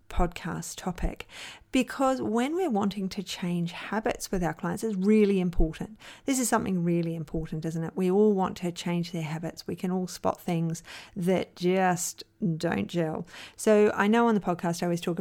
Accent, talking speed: Australian, 185 wpm